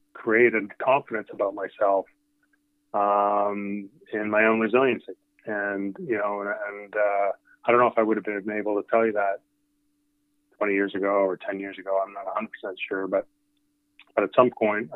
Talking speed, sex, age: 180 wpm, male, 30-49